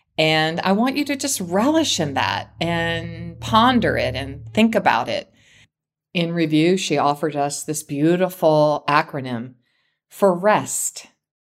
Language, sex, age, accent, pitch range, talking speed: English, female, 50-69, American, 145-195 Hz, 135 wpm